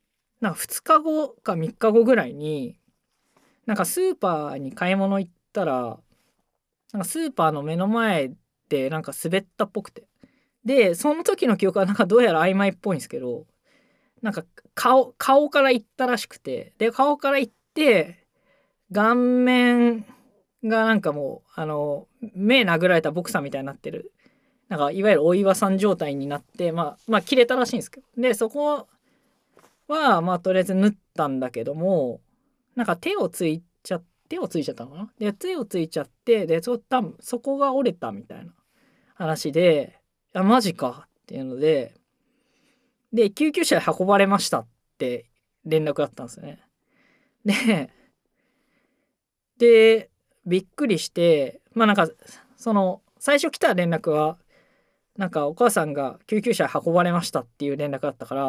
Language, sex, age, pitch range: Japanese, female, 20-39, 165-250 Hz